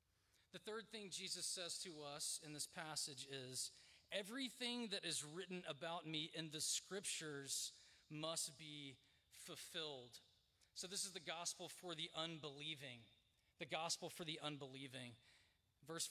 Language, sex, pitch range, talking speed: English, male, 140-195 Hz, 140 wpm